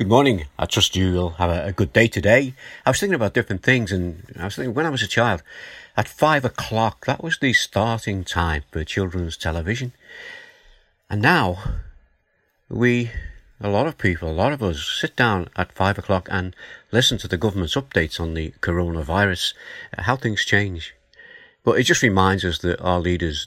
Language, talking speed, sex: English, 185 wpm, male